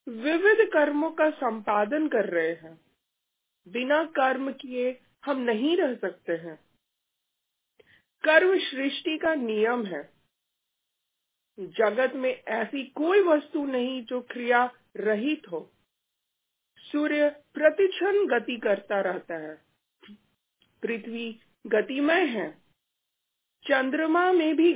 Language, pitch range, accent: Hindi, 225-295 Hz, native